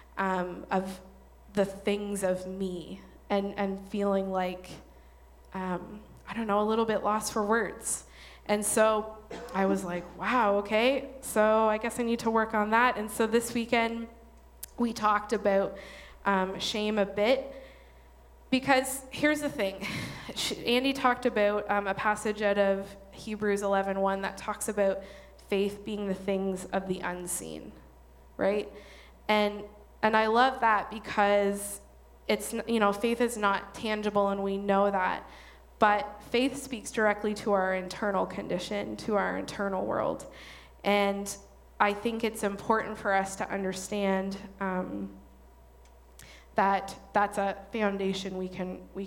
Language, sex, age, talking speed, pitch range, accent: English, female, 20-39, 145 wpm, 190-215 Hz, American